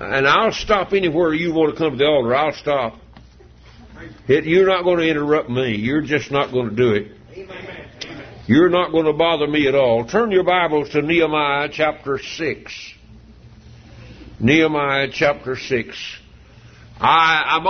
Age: 60-79